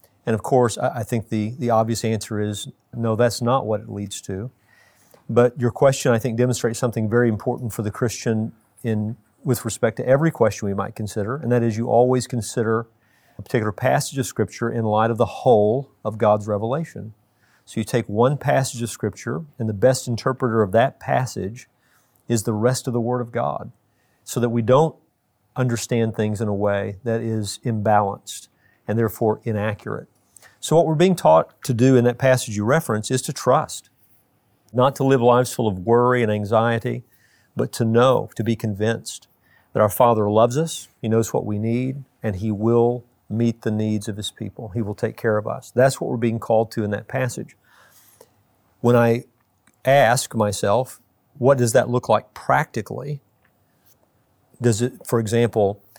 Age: 40-59